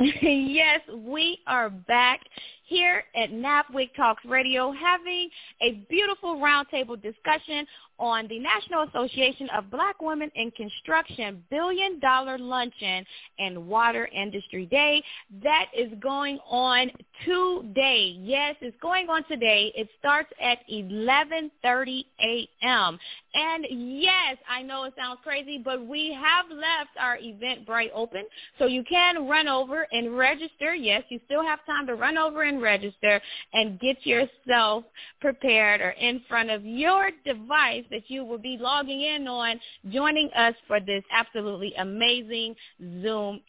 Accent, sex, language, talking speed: American, female, English, 140 wpm